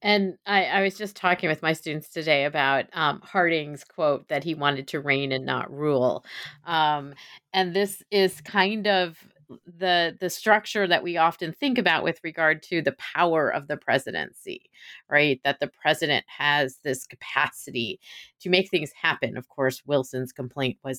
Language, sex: English, female